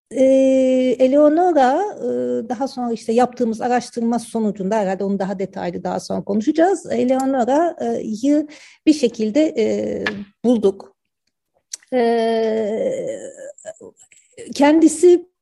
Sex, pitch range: female, 180-255 Hz